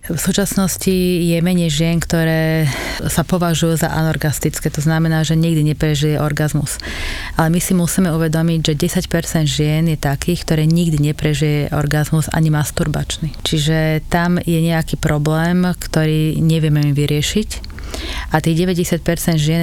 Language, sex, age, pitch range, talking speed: English, female, 30-49, 150-165 Hz, 135 wpm